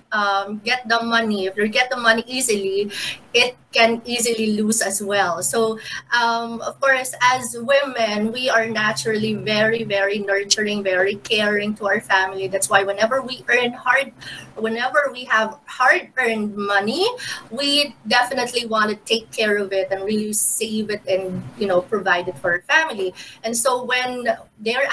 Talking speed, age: 165 wpm, 20-39